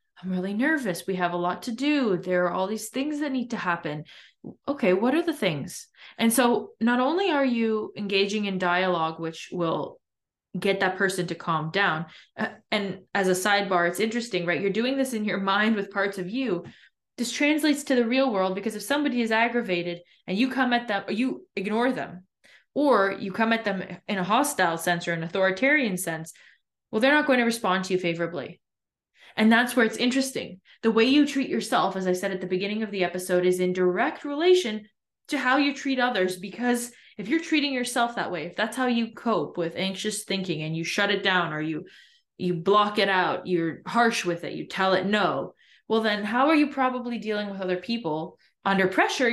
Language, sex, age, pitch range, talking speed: English, female, 20-39, 185-245 Hz, 210 wpm